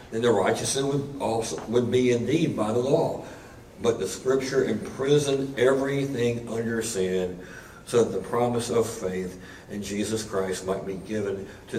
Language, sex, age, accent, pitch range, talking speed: English, male, 60-79, American, 95-115 Hz, 160 wpm